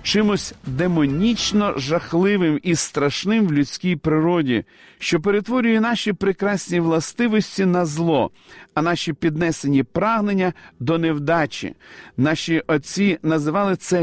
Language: Ukrainian